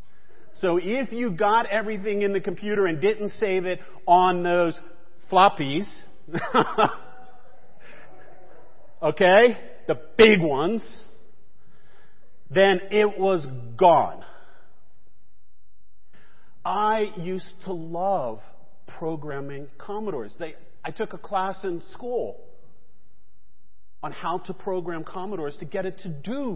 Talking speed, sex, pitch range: 100 wpm, male, 170-215 Hz